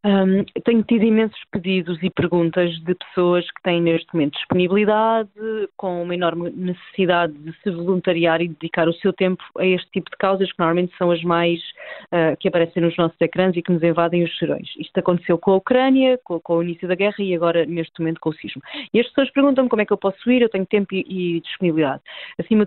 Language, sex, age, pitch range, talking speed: Portuguese, female, 20-39, 175-215 Hz, 215 wpm